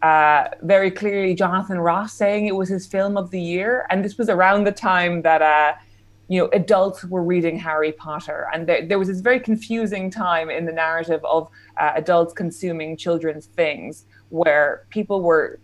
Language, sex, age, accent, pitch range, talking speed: English, female, 20-39, Irish, 160-200 Hz, 185 wpm